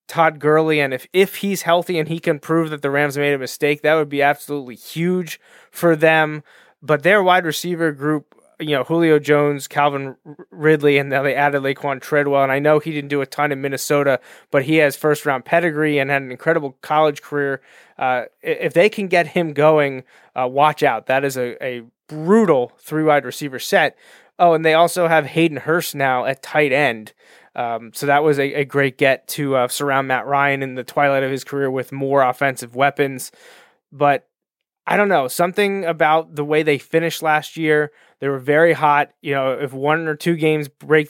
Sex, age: male, 20-39